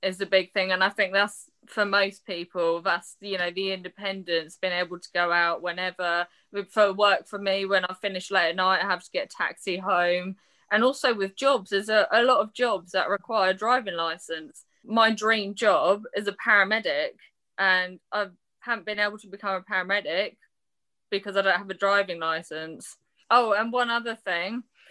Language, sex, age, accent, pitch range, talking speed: English, female, 20-39, British, 180-215 Hz, 195 wpm